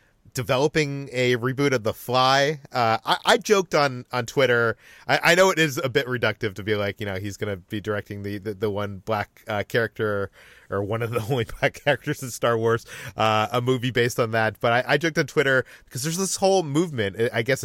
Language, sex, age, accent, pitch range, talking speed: English, male, 30-49, American, 110-140 Hz, 225 wpm